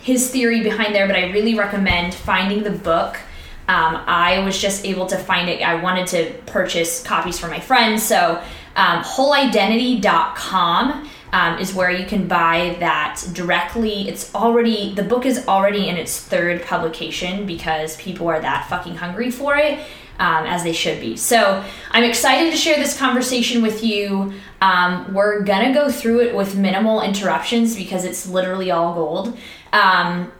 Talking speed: 170 wpm